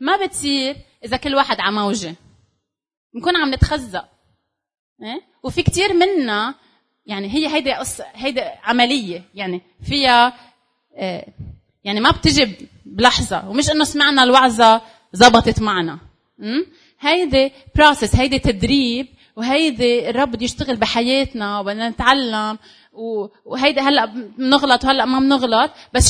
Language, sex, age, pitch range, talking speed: Arabic, female, 30-49, 220-285 Hz, 115 wpm